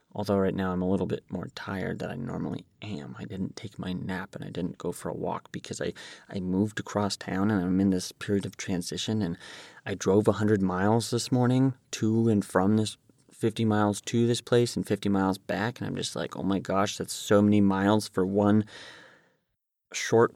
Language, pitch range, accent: English, 100-135 Hz, American